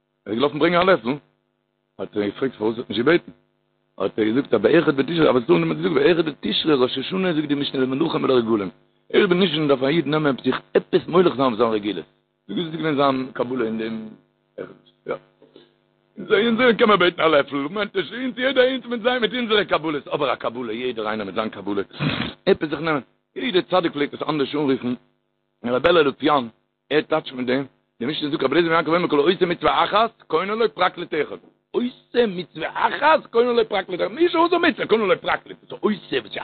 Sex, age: male, 60-79